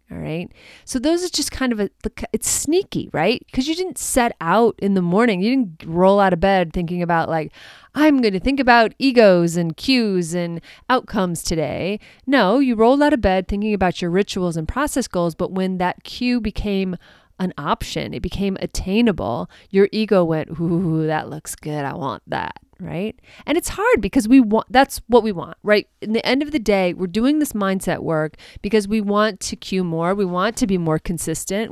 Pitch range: 175-230 Hz